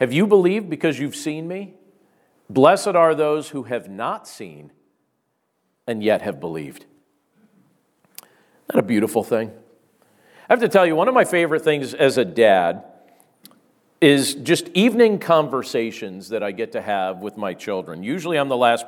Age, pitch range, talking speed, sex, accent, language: 50-69, 115-170 Hz, 165 wpm, male, American, English